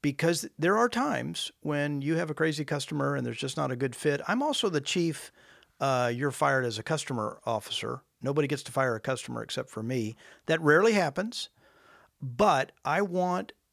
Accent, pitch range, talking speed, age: American, 125-165 Hz, 190 wpm, 50-69